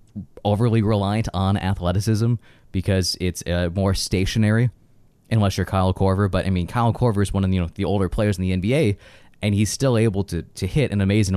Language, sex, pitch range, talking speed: English, male, 95-110 Hz, 190 wpm